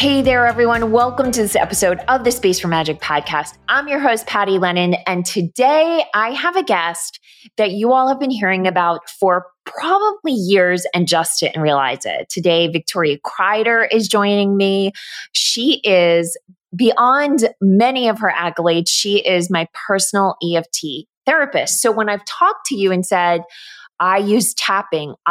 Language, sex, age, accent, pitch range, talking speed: English, female, 20-39, American, 175-225 Hz, 165 wpm